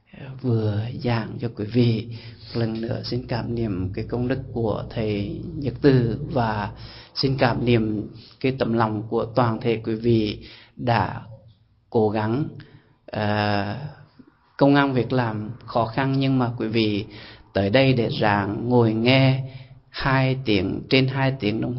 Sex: male